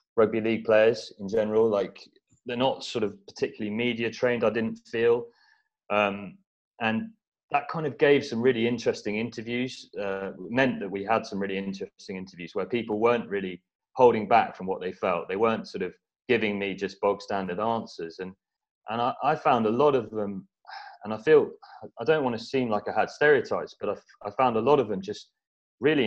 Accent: British